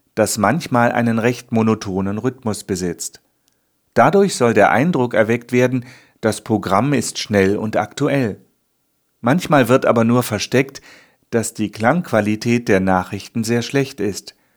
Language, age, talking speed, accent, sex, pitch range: German, 40-59, 130 wpm, German, male, 105-135 Hz